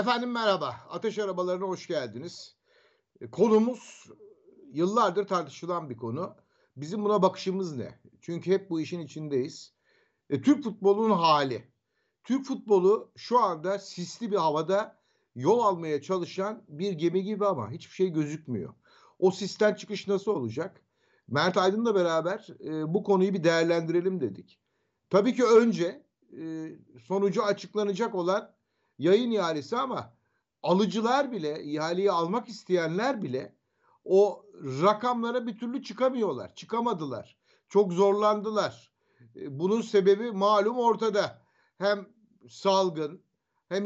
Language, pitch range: Turkish, 180-225 Hz